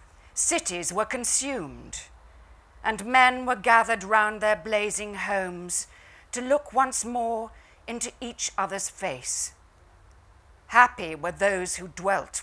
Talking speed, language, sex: 115 wpm, English, female